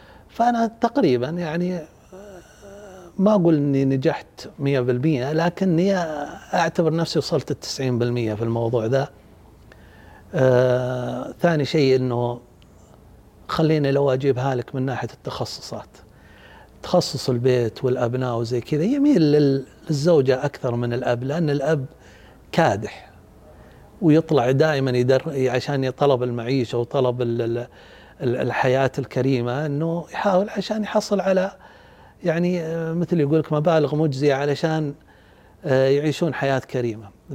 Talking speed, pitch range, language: 105 wpm, 120-155 Hz, Arabic